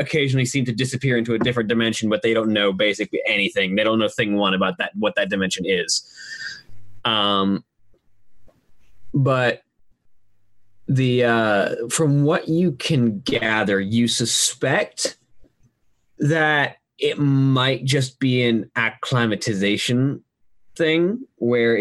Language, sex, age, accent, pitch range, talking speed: English, male, 20-39, American, 100-125 Hz, 125 wpm